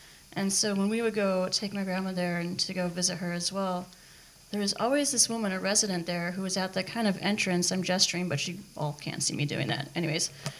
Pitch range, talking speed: 175-210 Hz, 245 wpm